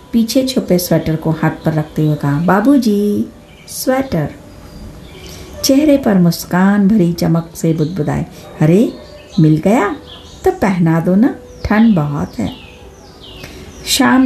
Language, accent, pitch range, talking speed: Hindi, native, 155-200 Hz, 120 wpm